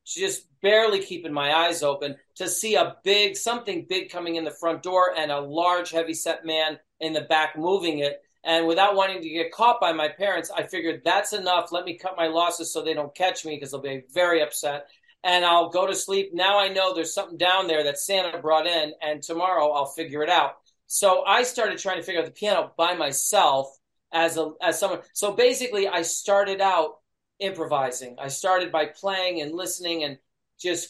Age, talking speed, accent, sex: 40-59, 210 wpm, American, male